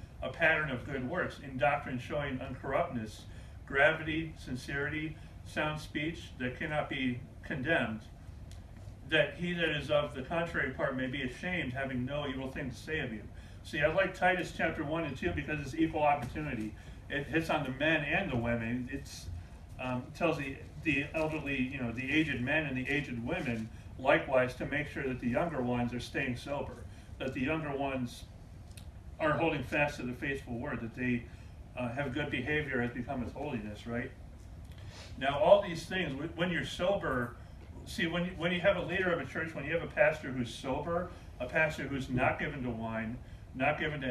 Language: English